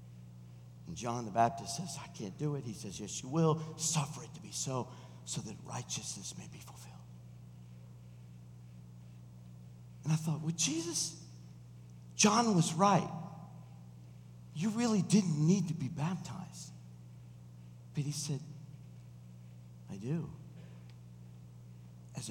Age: 50-69